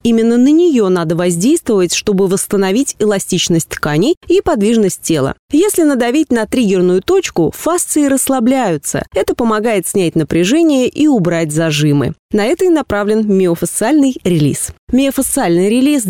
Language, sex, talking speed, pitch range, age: Russian, female, 125 wpm, 175-260 Hz, 20-39